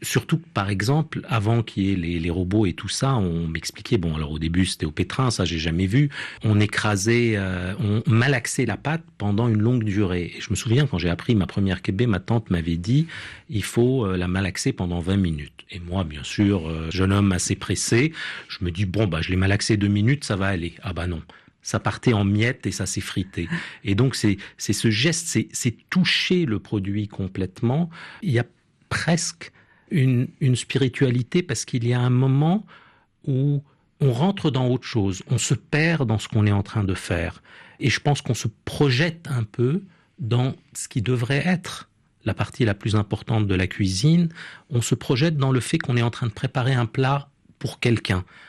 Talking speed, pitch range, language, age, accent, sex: 210 wpm, 100-135 Hz, French, 40-59, French, male